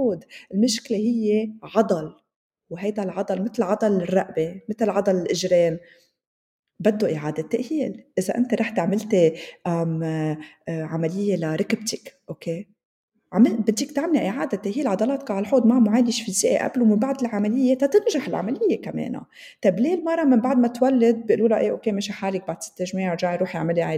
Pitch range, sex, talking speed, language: 185-245 Hz, female, 140 wpm, Arabic